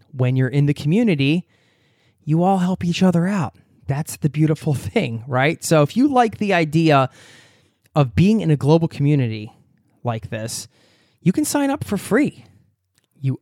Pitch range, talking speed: 120-165 Hz, 165 wpm